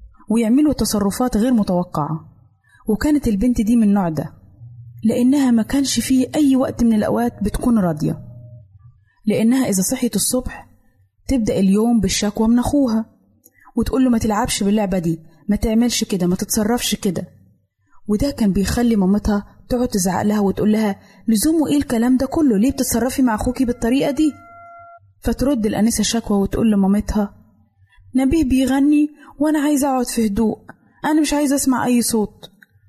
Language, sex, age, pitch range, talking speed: Arabic, female, 20-39, 190-250 Hz, 140 wpm